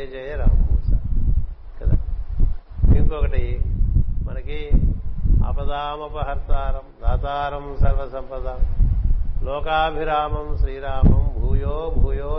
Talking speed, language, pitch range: 50 wpm, Telugu, 80-130 Hz